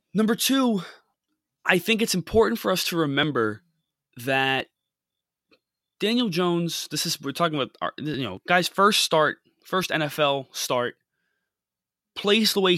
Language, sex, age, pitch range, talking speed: English, male, 20-39, 120-175 Hz, 135 wpm